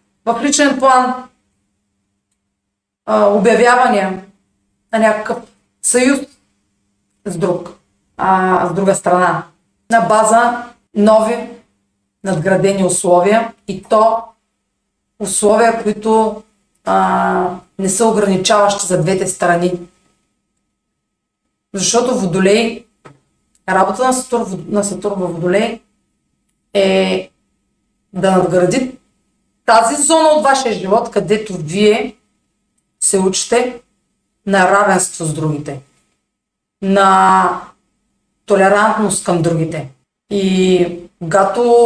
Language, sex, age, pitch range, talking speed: Bulgarian, female, 40-59, 180-230 Hz, 85 wpm